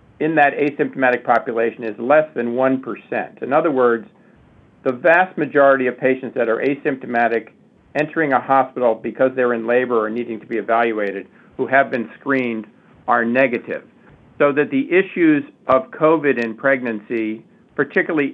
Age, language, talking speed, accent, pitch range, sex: 50-69, English, 150 wpm, American, 120-150 Hz, male